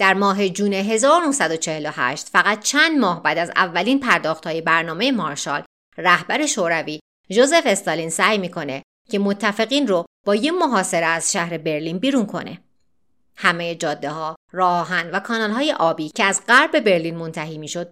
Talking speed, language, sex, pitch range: 145 wpm, Persian, female, 170-230 Hz